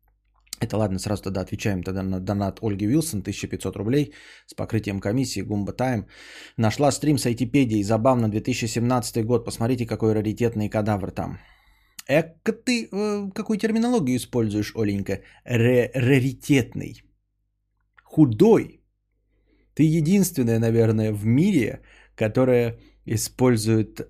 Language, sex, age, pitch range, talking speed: Bulgarian, male, 20-39, 105-135 Hz, 110 wpm